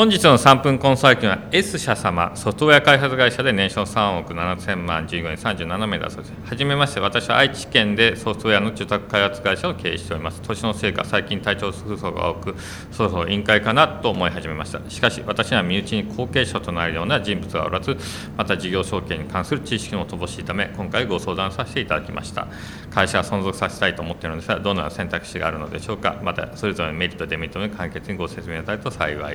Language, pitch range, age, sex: Japanese, 85-115 Hz, 40-59, male